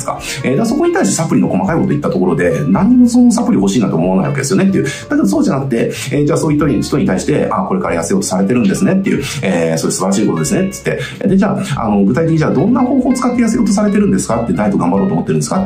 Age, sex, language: 30-49, male, Japanese